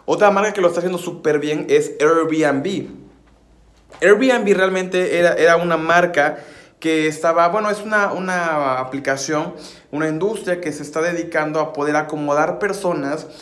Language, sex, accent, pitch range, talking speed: Spanish, male, Mexican, 145-185 Hz, 150 wpm